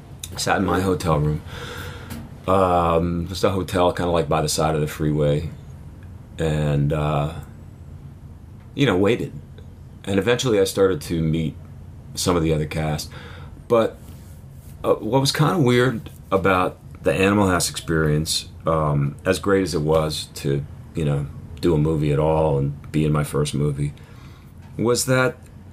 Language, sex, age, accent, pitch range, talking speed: English, male, 40-59, American, 75-95 Hz, 160 wpm